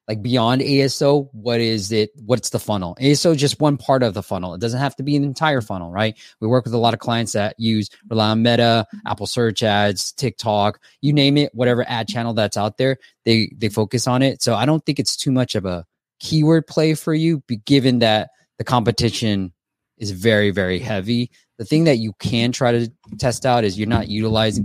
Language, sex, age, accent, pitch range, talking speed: English, male, 20-39, American, 100-120 Hz, 220 wpm